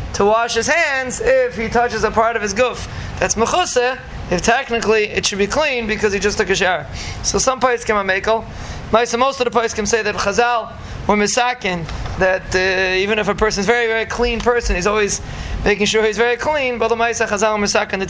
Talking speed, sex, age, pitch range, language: 220 wpm, male, 20-39, 200-230 Hz, English